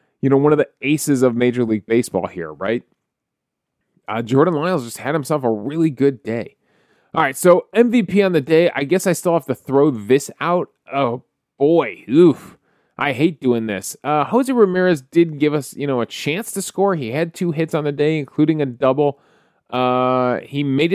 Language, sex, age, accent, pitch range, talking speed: English, male, 30-49, American, 125-180 Hz, 200 wpm